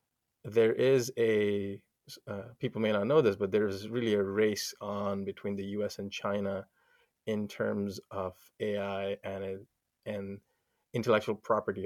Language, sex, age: English, male, 30-49